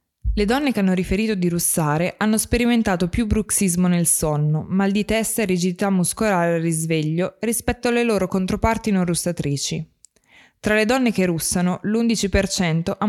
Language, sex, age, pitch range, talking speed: Italian, female, 20-39, 170-215 Hz, 155 wpm